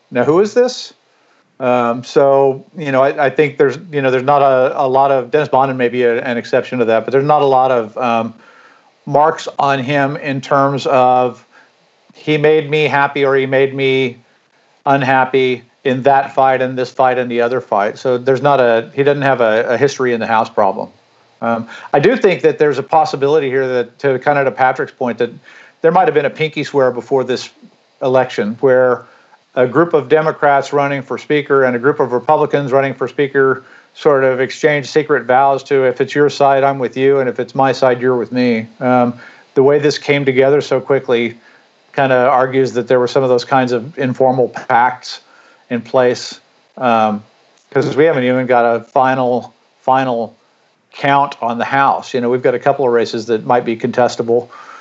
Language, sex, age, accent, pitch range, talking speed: English, male, 50-69, American, 125-140 Hz, 205 wpm